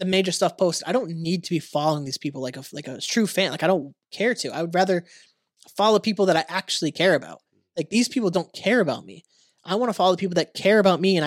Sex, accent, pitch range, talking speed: male, American, 140-185 Hz, 265 wpm